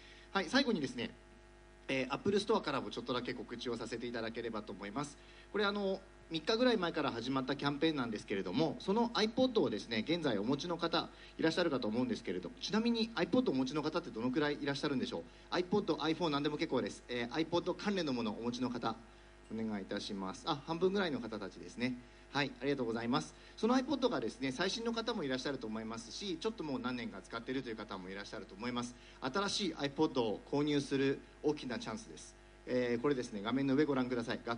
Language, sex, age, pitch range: Japanese, male, 40-59, 120-190 Hz